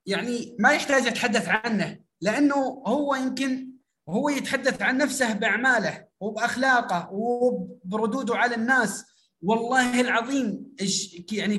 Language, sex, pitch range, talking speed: Arabic, male, 220-270 Hz, 105 wpm